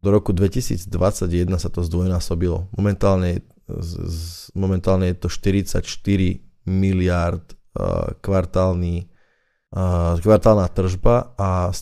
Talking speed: 95 wpm